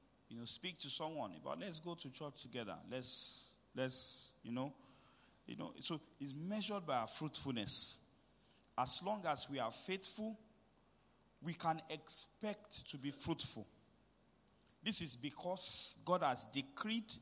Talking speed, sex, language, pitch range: 145 wpm, male, English, 120-155 Hz